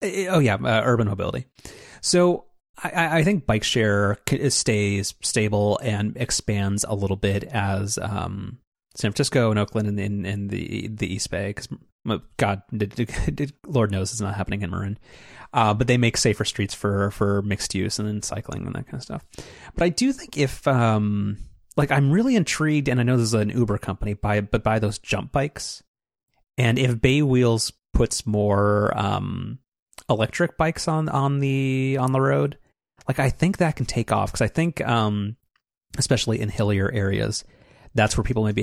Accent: American